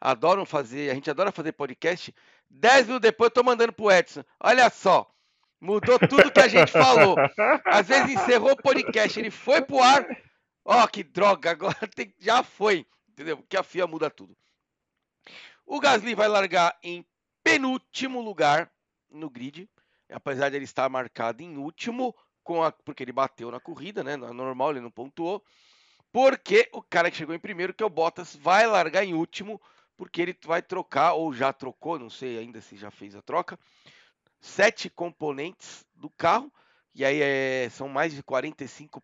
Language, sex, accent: Portuguese, male, Brazilian